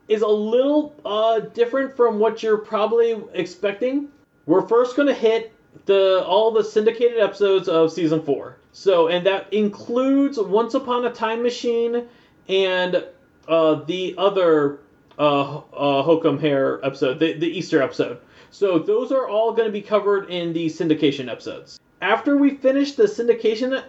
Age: 30-49